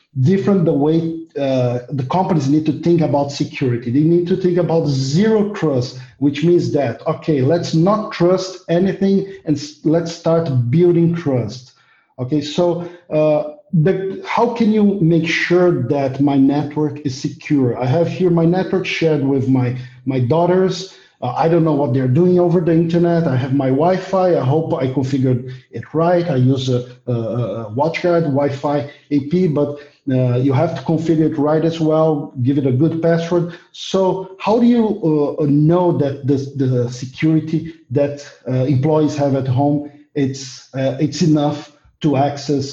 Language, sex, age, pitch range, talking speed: English, male, 50-69, 140-175 Hz, 165 wpm